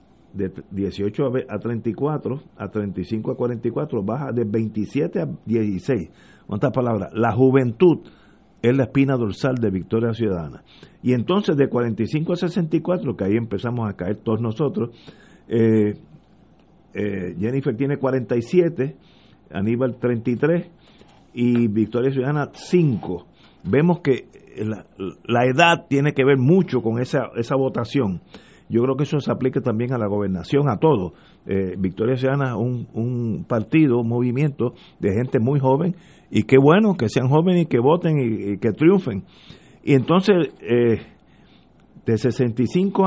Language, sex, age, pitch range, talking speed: Spanish, male, 50-69, 115-150 Hz, 145 wpm